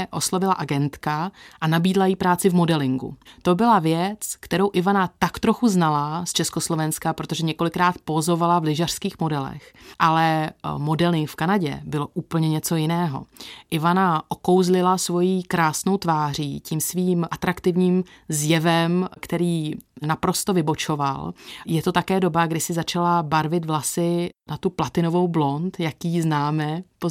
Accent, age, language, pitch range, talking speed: native, 30-49, Czech, 160-185 Hz, 135 wpm